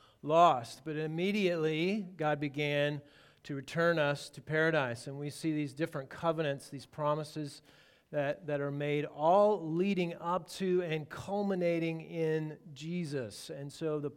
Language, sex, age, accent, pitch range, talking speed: English, male, 40-59, American, 145-180 Hz, 140 wpm